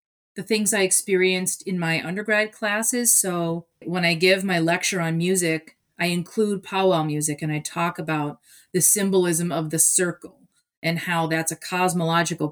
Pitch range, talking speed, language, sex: 165-215 Hz, 165 wpm, English, female